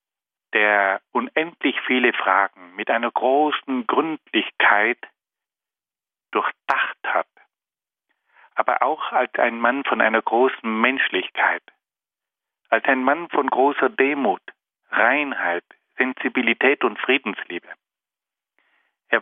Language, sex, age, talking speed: German, male, 50-69, 95 wpm